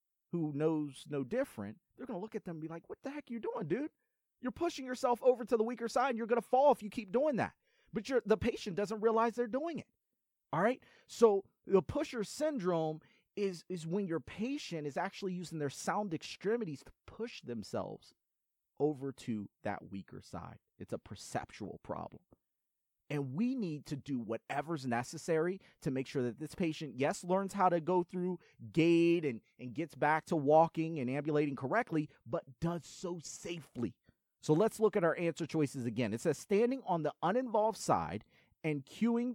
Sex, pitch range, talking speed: male, 150-225 Hz, 190 wpm